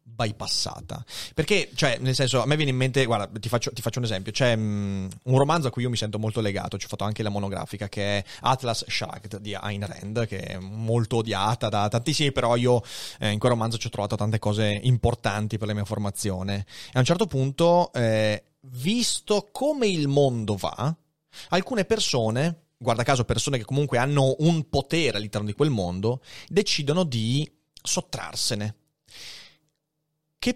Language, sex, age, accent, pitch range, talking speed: Italian, male, 30-49, native, 110-150 Hz, 180 wpm